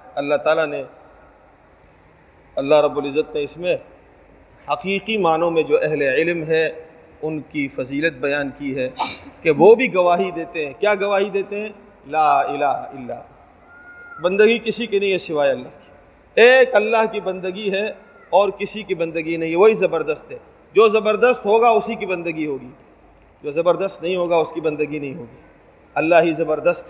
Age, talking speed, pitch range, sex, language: 40-59, 165 wpm, 165-210 Hz, male, Urdu